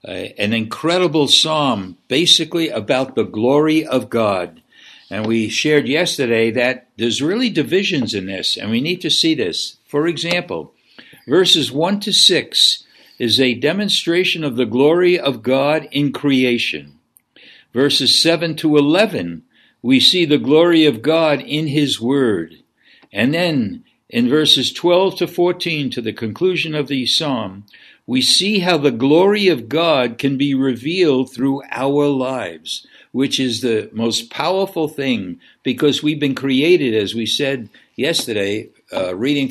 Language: English